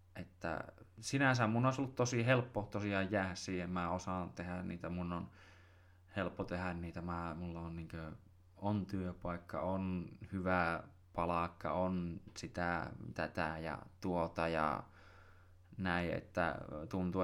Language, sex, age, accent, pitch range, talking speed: Finnish, male, 20-39, native, 85-95 Hz, 130 wpm